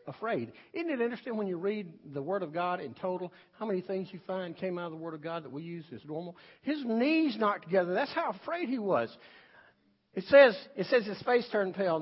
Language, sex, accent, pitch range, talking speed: English, male, American, 150-205 Hz, 230 wpm